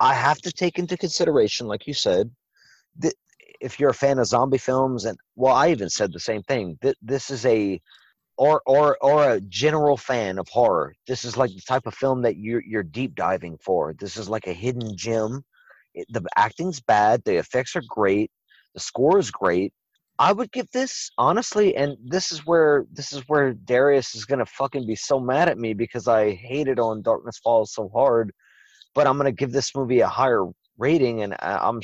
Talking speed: 205 wpm